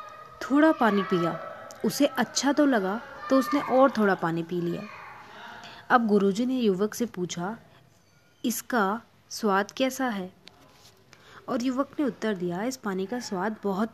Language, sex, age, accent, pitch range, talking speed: Hindi, female, 20-39, native, 185-235 Hz, 145 wpm